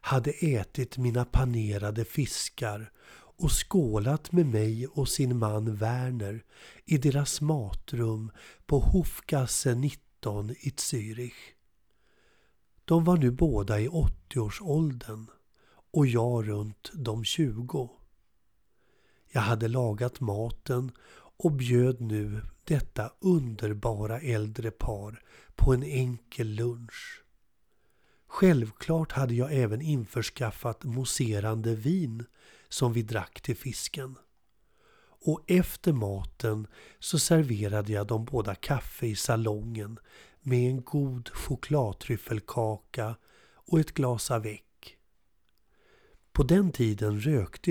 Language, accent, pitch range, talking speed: Swedish, native, 110-140 Hz, 105 wpm